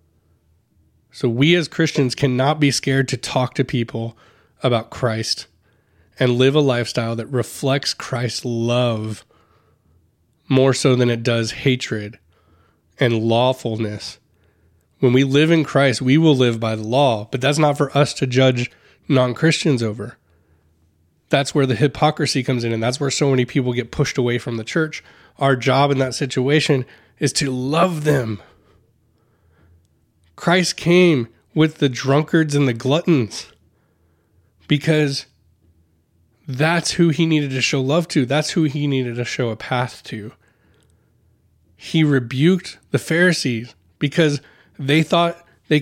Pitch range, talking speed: 110-140 Hz, 145 wpm